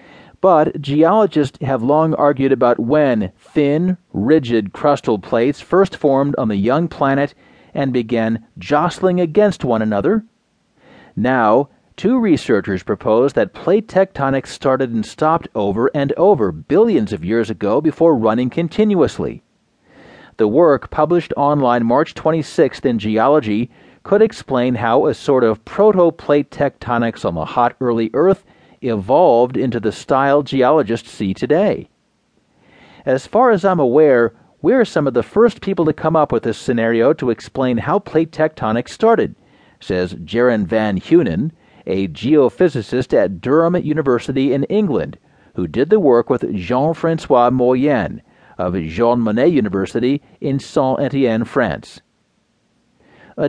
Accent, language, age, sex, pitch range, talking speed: American, English, 40-59, male, 120-165 Hz, 135 wpm